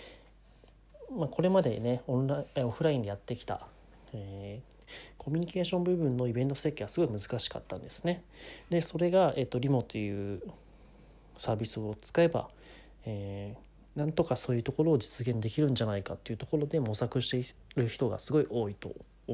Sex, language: male, Japanese